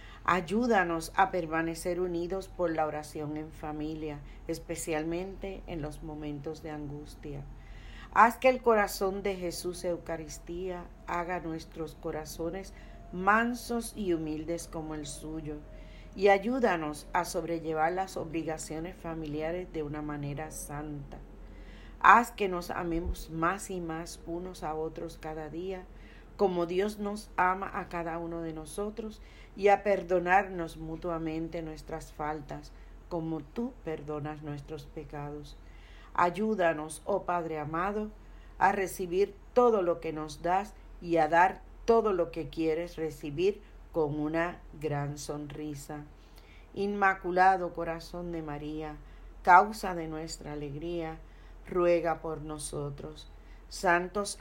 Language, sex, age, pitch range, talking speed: Spanish, female, 40-59, 155-185 Hz, 120 wpm